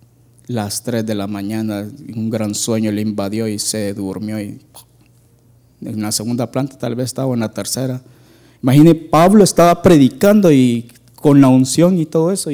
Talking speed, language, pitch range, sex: 165 wpm, Spanish, 115-140 Hz, male